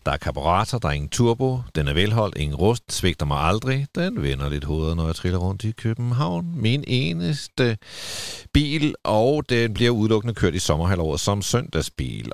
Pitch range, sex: 85-120 Hz, male